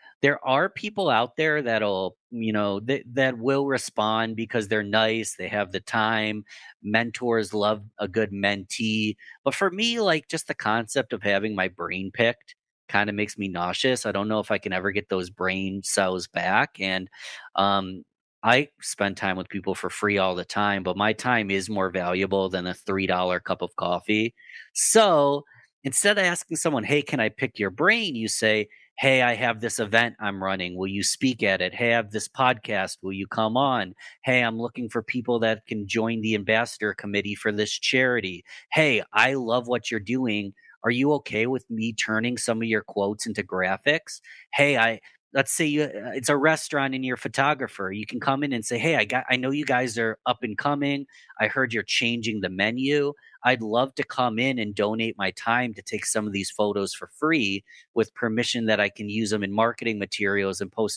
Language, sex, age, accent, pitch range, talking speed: English, male, 30-49, American, 100-130 Hz, 205 wpm